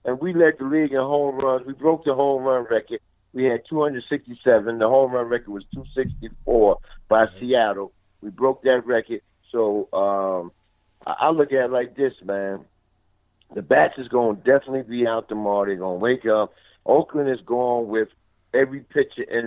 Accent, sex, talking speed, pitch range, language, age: American, male, 180 wpm, 100-135 Hz, English, 50-69